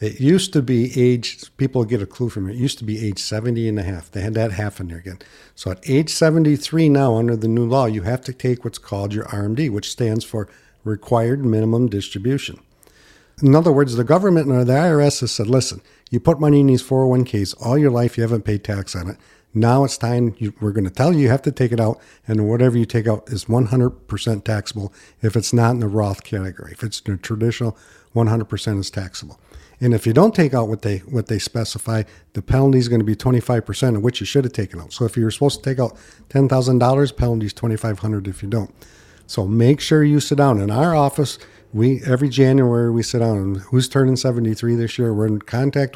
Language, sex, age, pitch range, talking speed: English, male, 50-69, 110-135 Hz, 230 wpm